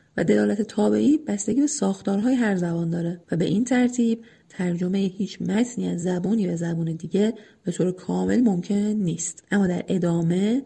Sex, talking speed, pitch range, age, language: female, 165 wpm, 175-215 Hz, 30-49, English